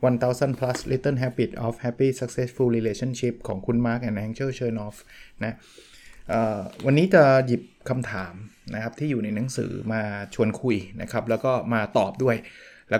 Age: 20-39